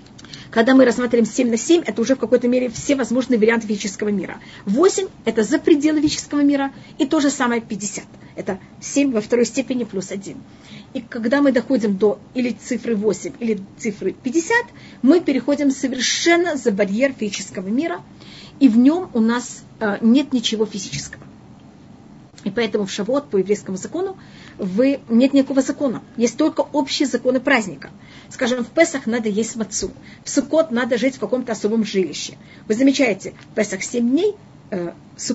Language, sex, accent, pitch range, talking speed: Russian, female, native, 215-275 Hz, 165 wpm